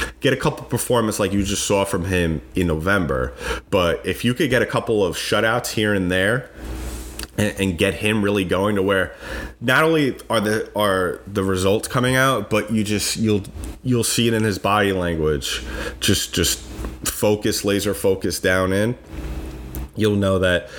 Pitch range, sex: 90-115 Hz, male